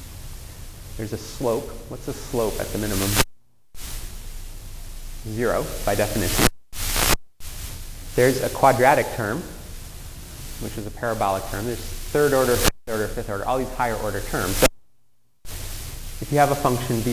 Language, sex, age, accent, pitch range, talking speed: English, male, 30-49, American, 95-120 Hz, 135 wpm